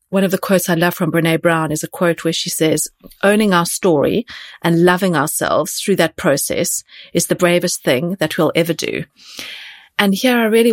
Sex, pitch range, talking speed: female, 165-195 Hz, 200 wpm